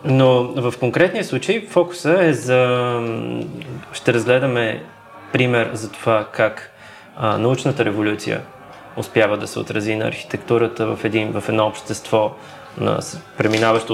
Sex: male